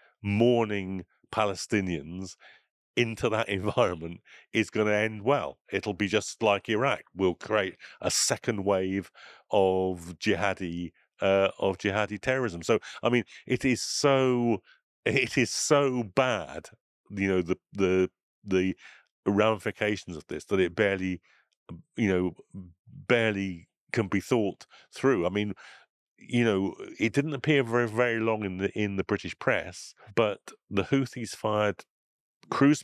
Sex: male